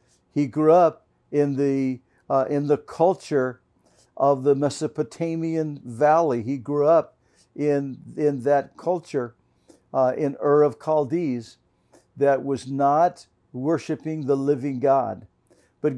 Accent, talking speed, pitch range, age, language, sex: American, 125 wpm, 135-165 Hz, 60-79, English, male